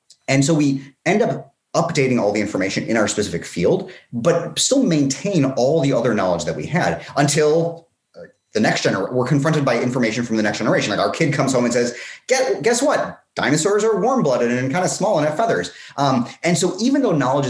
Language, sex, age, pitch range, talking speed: English, male, 30-49, 125-175 Hz, 210 wpm